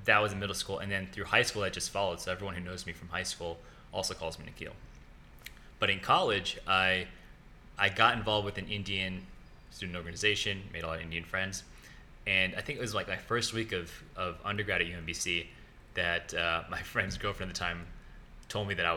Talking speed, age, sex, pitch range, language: 220 wpm, 20-39, male, 90-105 Hz, English